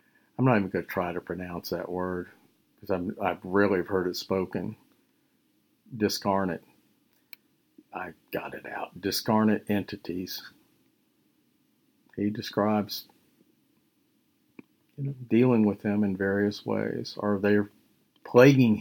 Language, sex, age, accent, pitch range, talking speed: English, male, 50-69, American, 100-115 Hz, 110 wpm